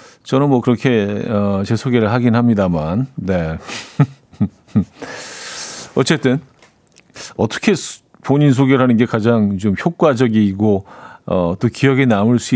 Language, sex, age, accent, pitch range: Korean, male, 40-59, native, 105-145 Hz